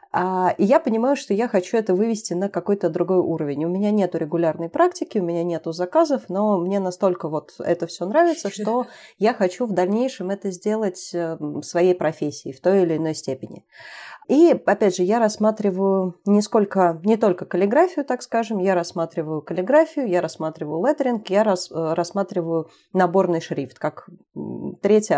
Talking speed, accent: 155 wpm, native